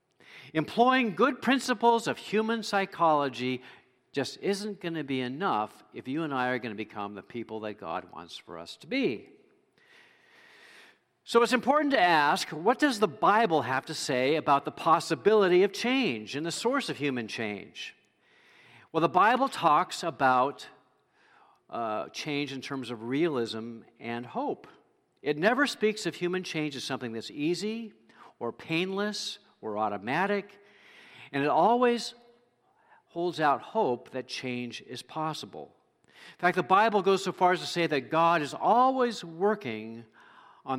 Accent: American